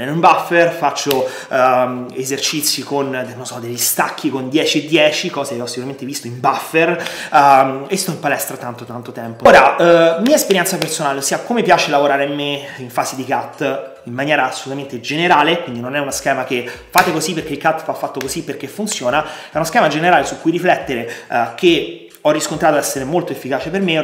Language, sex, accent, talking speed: Italian, male, native, 205 wpm